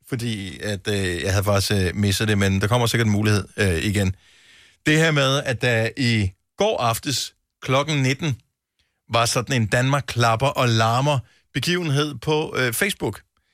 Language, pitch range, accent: Danish, 95-125 Hz, native